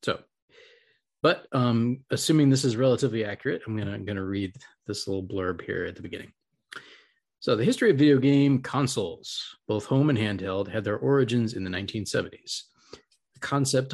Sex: male